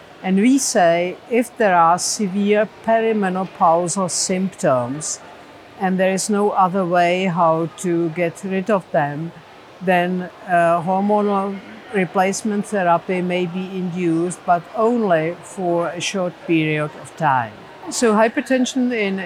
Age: 50-69